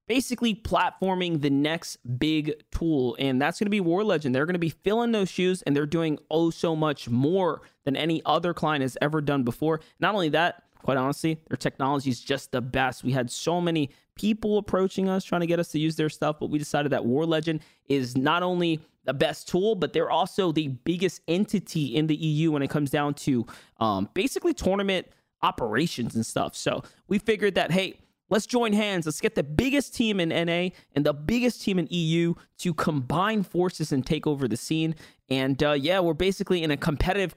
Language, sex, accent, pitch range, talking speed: English, male, American, 140-180 Hz, 210 wpm